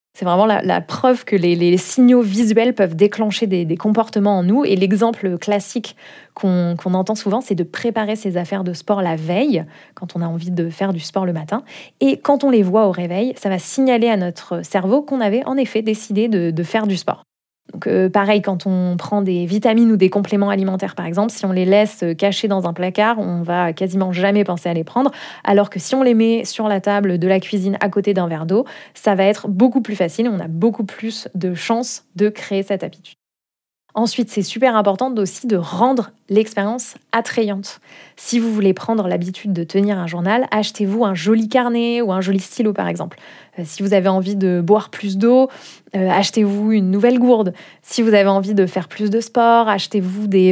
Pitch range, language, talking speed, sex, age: 190-225 Hz, French, 215 wpm, female, 20-39